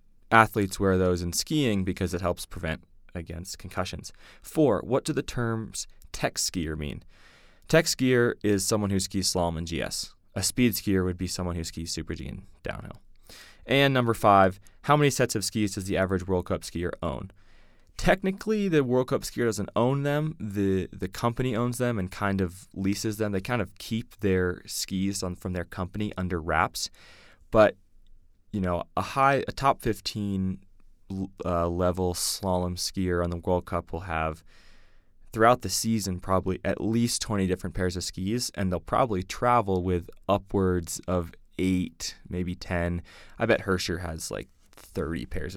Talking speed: 175 wpm